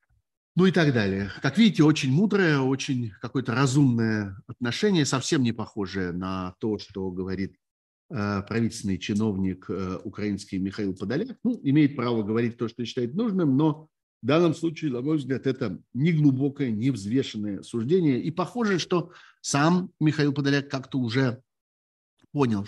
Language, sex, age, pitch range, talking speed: Russian, male, 50-69, 105-140 Hz, 145 wpm